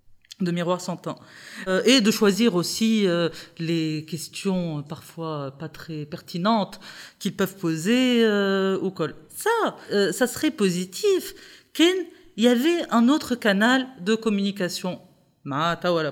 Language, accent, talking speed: French, French, 135 wpm